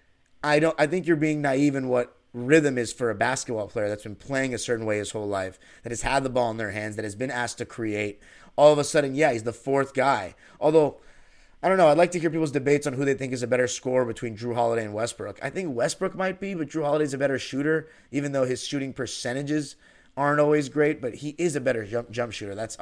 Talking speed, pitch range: 255 wpm, 120-150 Hz